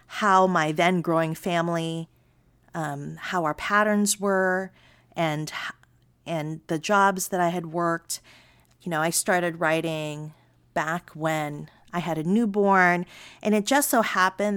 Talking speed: 140 wpm